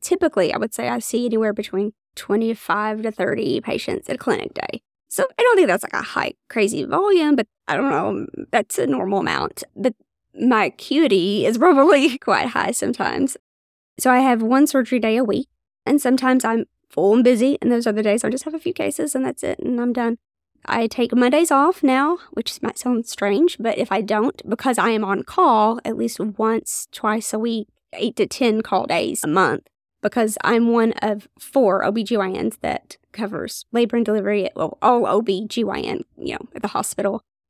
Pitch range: 215-275 Hz